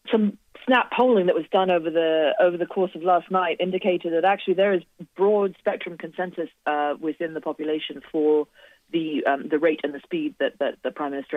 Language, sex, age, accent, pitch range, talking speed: English, female, 30-49, British, 140-170 Hz, 205 wpm